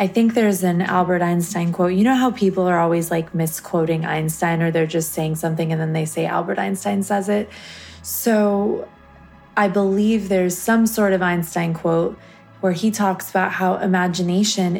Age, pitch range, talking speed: 20-39, 180-205 Hz, 180 wpm